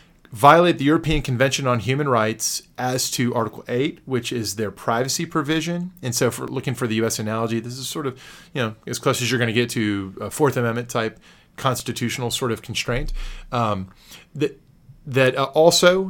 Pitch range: 110-140 Hz